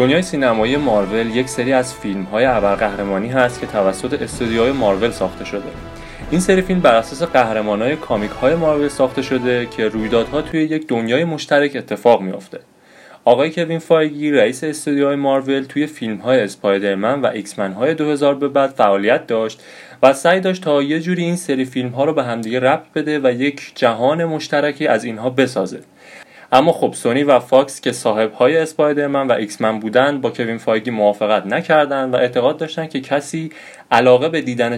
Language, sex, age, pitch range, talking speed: Persian, male, 30-49, 115-155 Hz, 165 wpm